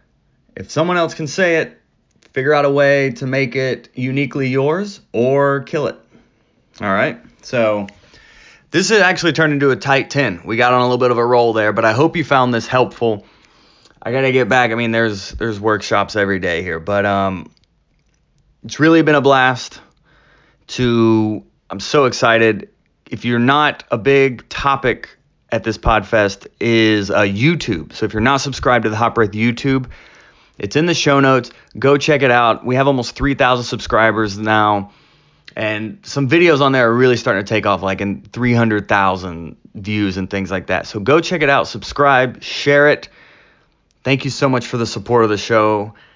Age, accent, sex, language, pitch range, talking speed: 30-49, American, male, English, 105-140 Hz, 190 wpm